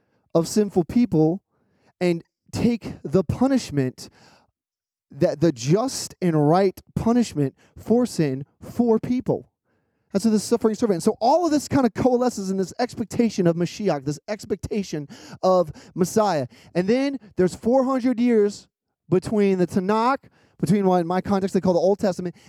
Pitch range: 165-215 Hz